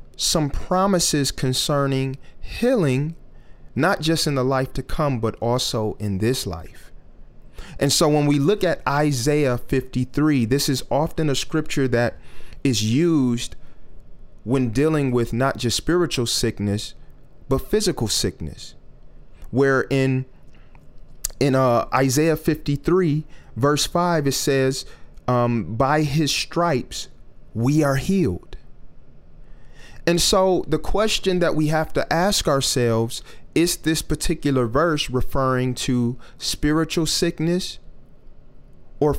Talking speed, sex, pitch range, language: 120 wpm, male, 120-160 Hz, English